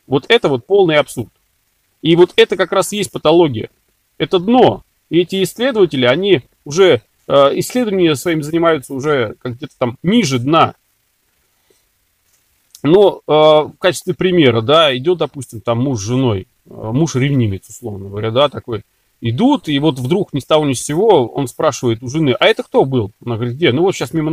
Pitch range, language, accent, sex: 125-190 Hz, Russian, native, male